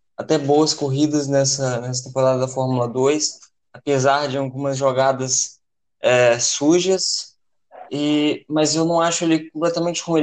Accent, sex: Brazilian, male